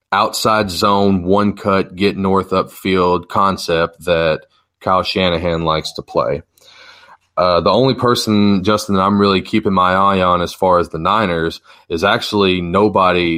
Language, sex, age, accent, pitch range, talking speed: English, male, 30-49, American, 85-100 Hz, 150 wpm